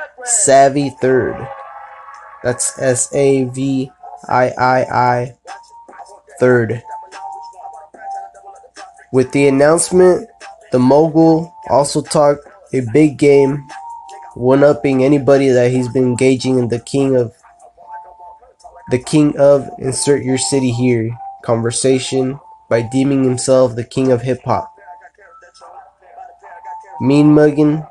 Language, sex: English, male